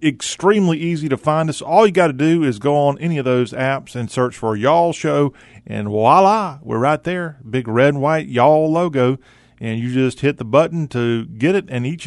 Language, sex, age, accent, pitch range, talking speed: English, male, 40-59, American, 115-145 Hz, 220 wpm